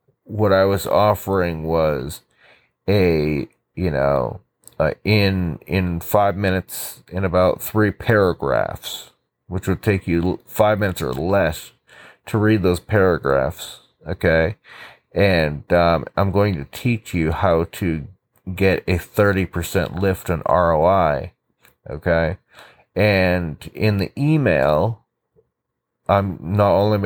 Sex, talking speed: male, 120 wpm